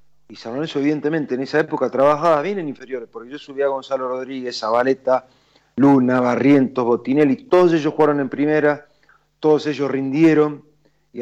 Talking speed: 160 wpm